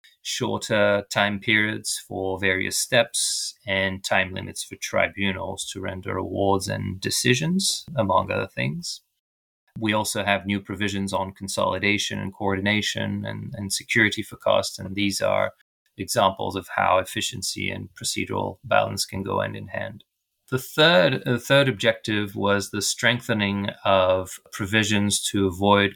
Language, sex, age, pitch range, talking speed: English, male, 30-49, 100-115 Hz, 140 wpm